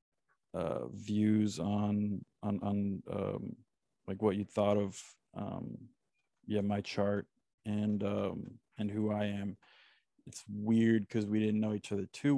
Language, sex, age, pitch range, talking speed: English, male, 20-39, 100-115 Hz, 145 wpm